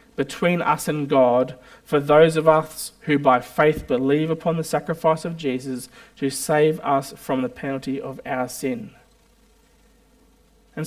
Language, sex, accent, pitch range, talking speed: English, male, Australian, 150-230 Hz, 150 wpm